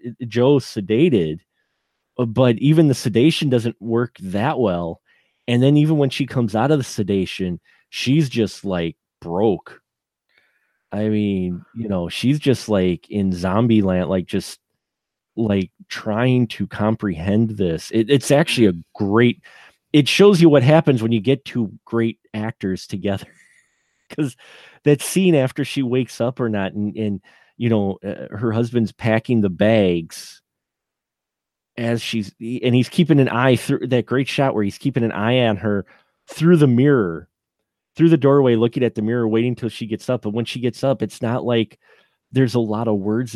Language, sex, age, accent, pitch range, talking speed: English, male, 30-49, American, 100-130 Hz, 170 wpm